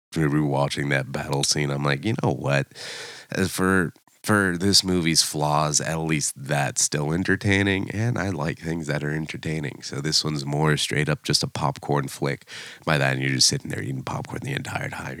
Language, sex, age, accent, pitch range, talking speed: English, male, 30-49, American, 70-85 Hz, 195 wpm